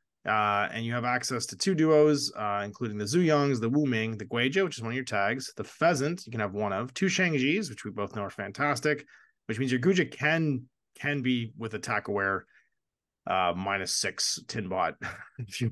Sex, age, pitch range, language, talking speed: male, 30-49, 100-140 Hz, English, 205 wpm